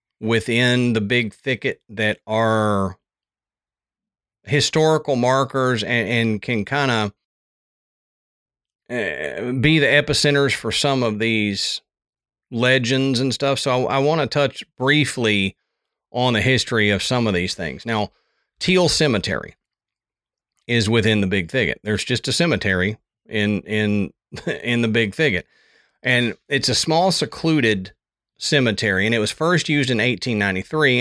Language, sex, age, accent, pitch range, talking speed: English, male, 40-59, American, 105-140 Hz, 135 wpm